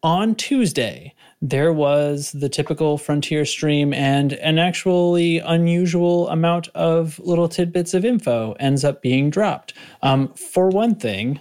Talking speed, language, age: 135 wpm, English, 30-49